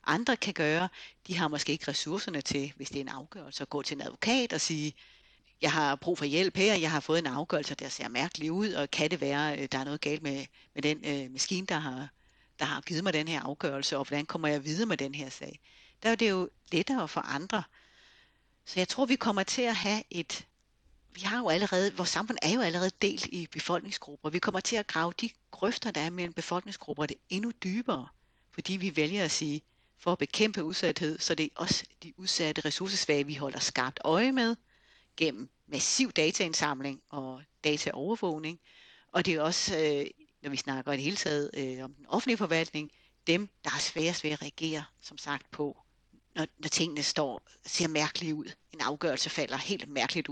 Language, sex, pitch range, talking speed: Danish, female, 145-180 Hz, 205 wpm